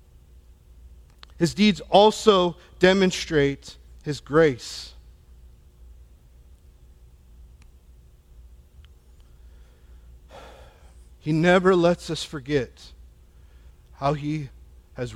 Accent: American